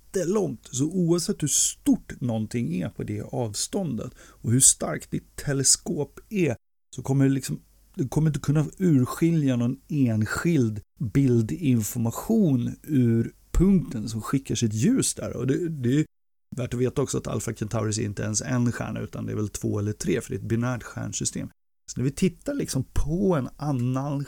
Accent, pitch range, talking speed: native, 120-160 Hz, 180 wpm